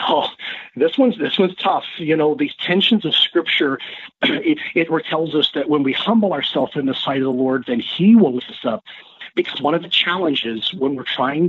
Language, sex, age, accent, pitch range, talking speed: English, male, 40-59, American, 135-185 Hz, 215 wpm